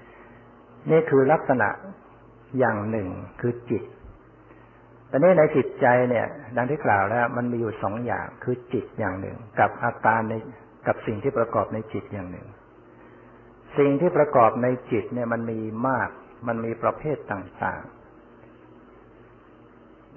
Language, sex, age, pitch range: Thai, male, 60-79, 100-125 Hz